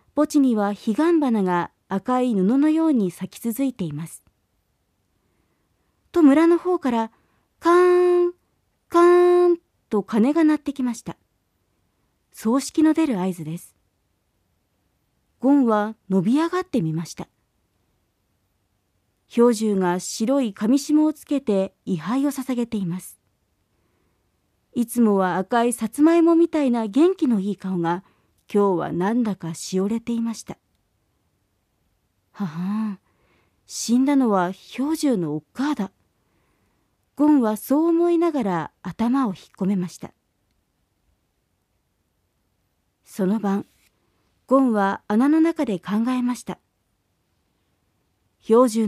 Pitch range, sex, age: 185-280 Hz, female, 40-59